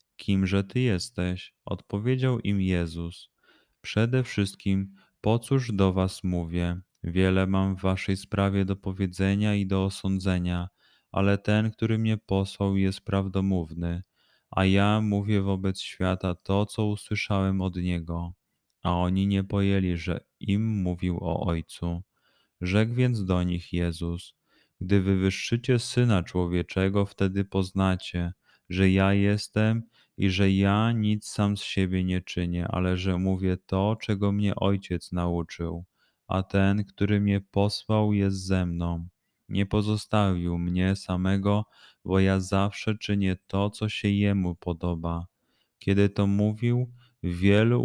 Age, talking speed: 20-39, 130 wpm